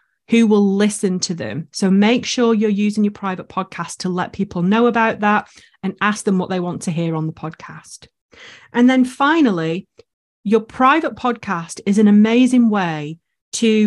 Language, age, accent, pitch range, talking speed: English, 30-49, British, 185-225 Hz, 175 wpm